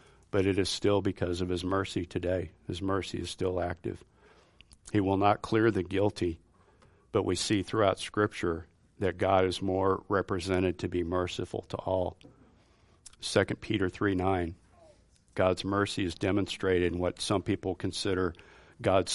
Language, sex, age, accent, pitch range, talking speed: English, male, 50-69, American, 90-100 Hz, 155 wpm